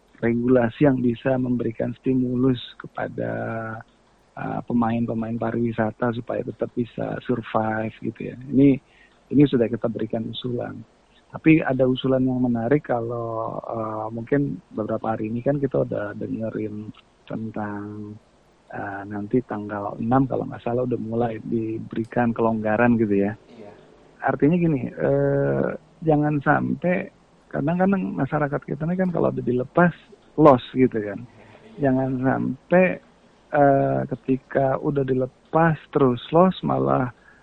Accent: native